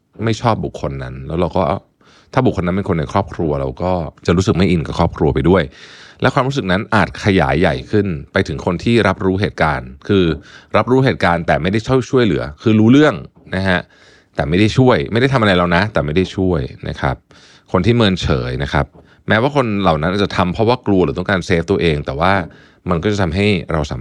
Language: Thai